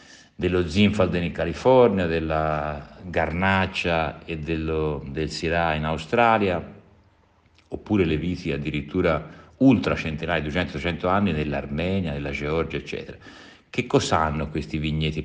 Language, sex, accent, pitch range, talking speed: Italian, male, native, 75-90 Hz, 115 wpm